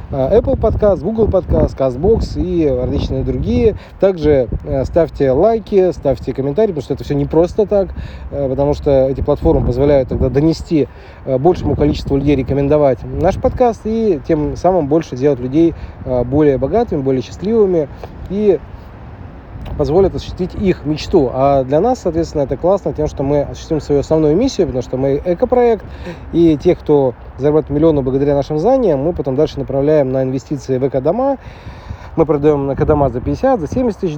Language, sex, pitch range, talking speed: Russian, male, 130-165 Hz, 160 wpm